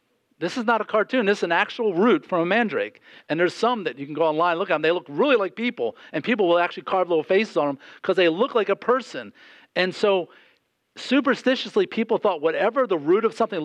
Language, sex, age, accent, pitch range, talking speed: English, male, 50-69, American, 160-235 Hz, 240 wpm